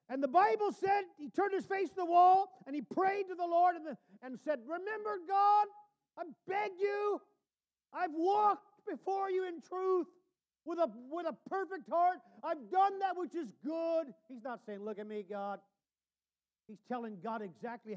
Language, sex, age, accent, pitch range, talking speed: English, male, 50-69, American, 220-365 Hz, 175 wpm